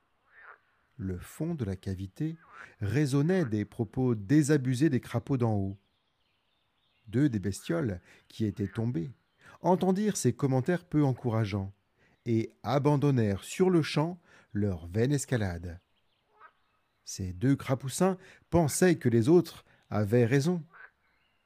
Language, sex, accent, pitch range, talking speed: French, male, French, 105-155 Hz, 115 wpm